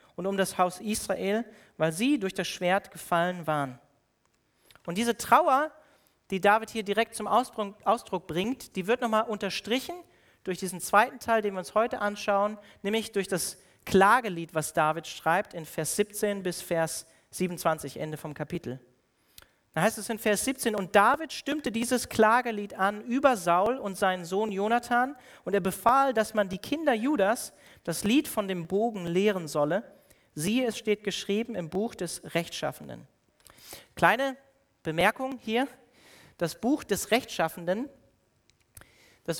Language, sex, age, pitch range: German, male, 40-59, 175-235 Hz